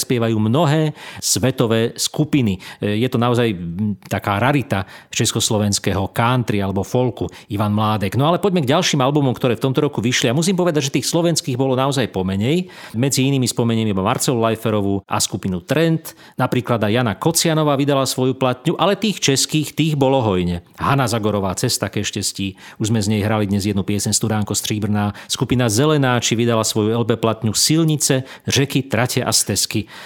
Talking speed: 170 wpm